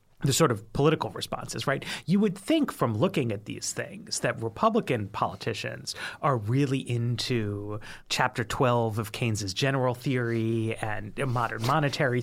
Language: English